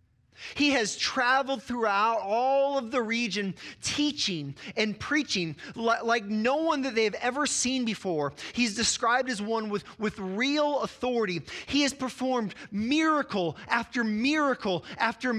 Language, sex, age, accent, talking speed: English, male, 30-49, American, 135 wpm